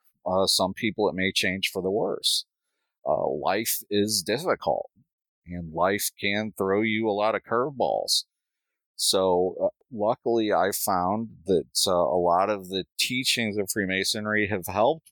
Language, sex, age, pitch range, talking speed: English, male, 40-59, 85-105 Hz, 150 wpm